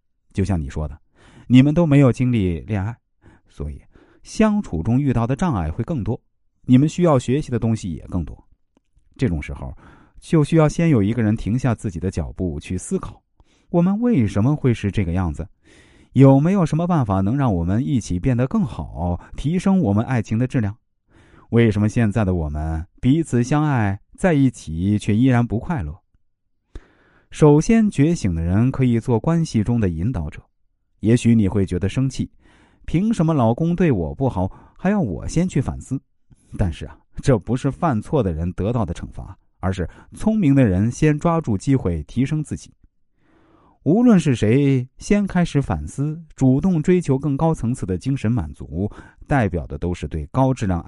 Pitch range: 95-140 Hz